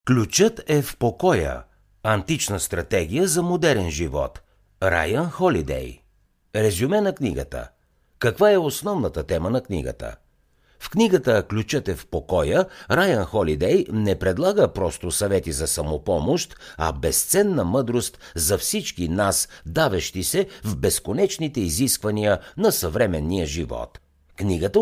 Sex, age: male, 60-79